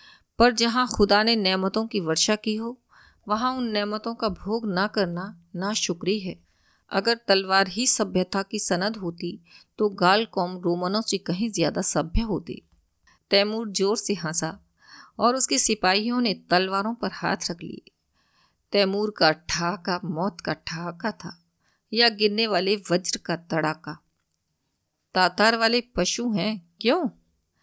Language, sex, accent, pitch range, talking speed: Hindi, female, native, 175-220 Hz, 135 wpm